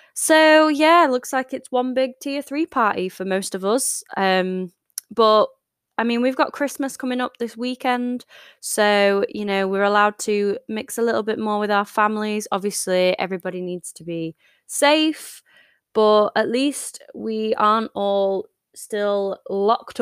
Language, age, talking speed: English, 20-39, 160 wpm